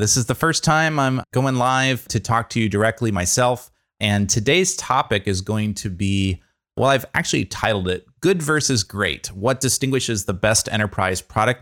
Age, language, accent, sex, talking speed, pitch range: 30-49, English, American, male, 180 wpm, 95-120 Hz